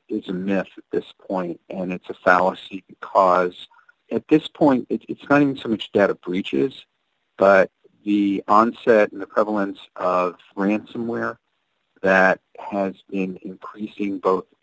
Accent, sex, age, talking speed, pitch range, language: American, male, 40-59, 140 wpm, 95-130 Hz, English